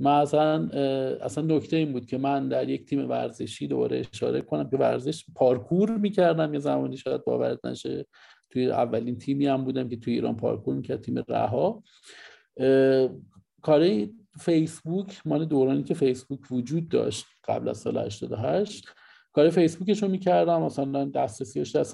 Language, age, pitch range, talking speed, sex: Persian, 50-69, 130-170 Hz, 155 wpm, male